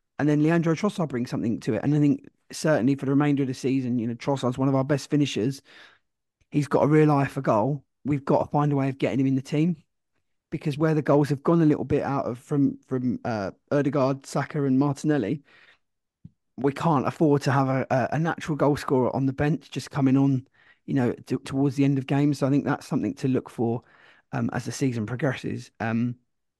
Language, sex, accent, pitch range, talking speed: English, male, British, 130-150 Hz, 230 wpm